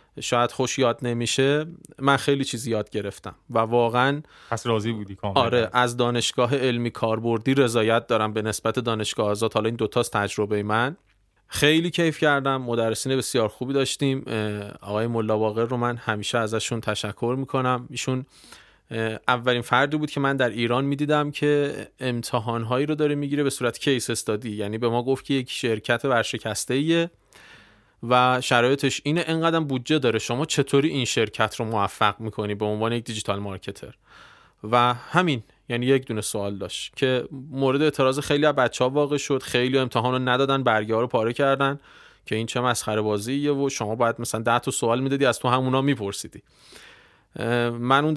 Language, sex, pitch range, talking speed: Persian, male, 110-135 Hz, 165 wpm